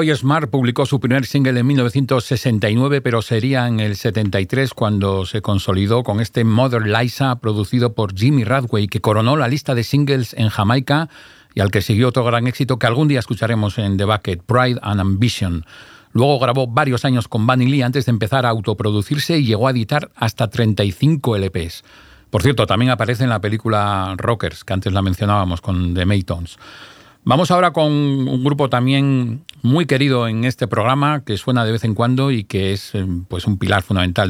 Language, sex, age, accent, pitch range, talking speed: Spanish, male, 40-59, Spanish, 105-135 Hz, 185 wpm